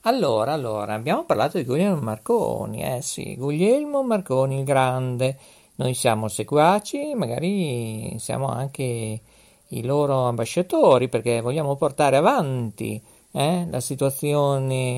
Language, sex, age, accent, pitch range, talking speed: Italian, male, 50-69, native, 120-165 Hz, 115 wpm